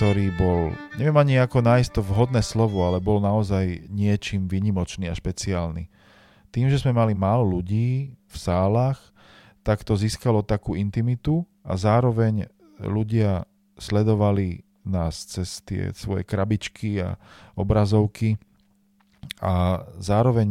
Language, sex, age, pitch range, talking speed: Slovak, male, 40-59, 90-110 Hz, 120 wpm